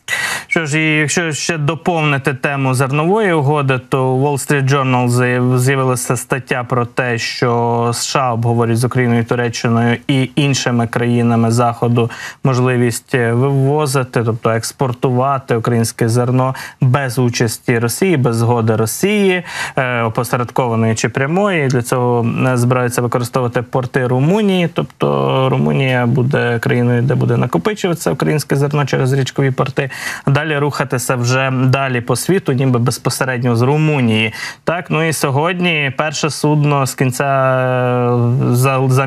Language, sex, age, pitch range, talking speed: Ukrainian, male, 20-39, 120-145 Hz, 125 wpm